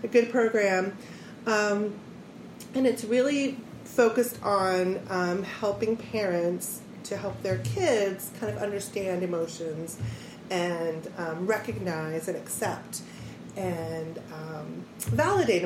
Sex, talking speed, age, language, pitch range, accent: female, 105 wpm, 30-49, English, 180-225 Hz, American